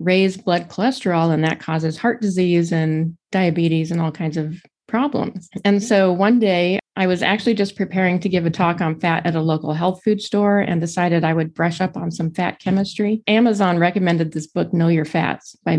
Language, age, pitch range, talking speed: English, 30-49, 170-205 Hz, 205 wpm